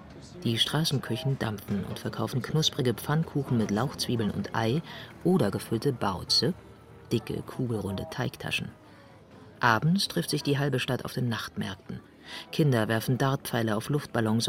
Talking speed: 130 wpm